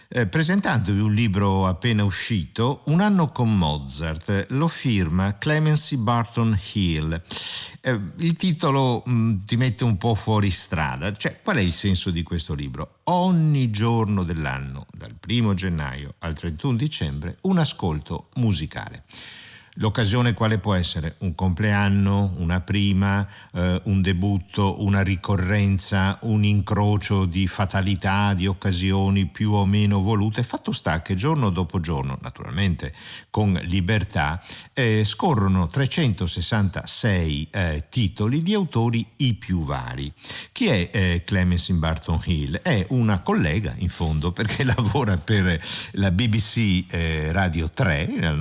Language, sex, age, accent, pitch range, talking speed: Italian, male, 50-69, native, 85-115 Hz, 130 wpm